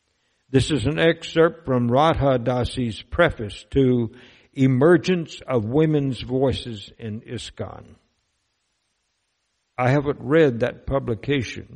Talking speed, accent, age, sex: 100 wpm, American, 60-79, male